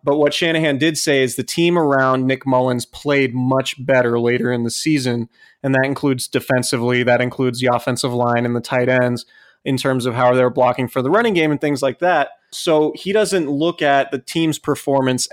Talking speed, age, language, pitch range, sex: 210 wpm, 30-49, English, 125-150 Hz, male